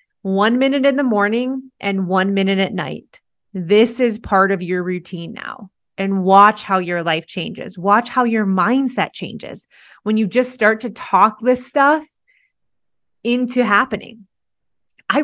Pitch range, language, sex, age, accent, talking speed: 190-245 Hz, English, female, 30-49, American, 155 wpm